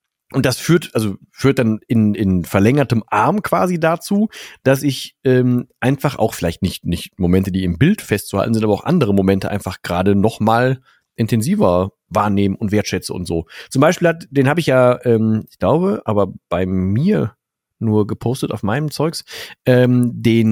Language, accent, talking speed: German, German, 175 wpm